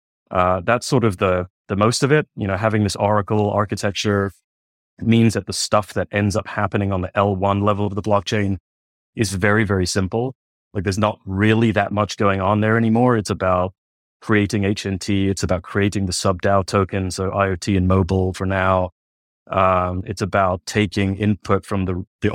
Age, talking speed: 30-49, 190 wpm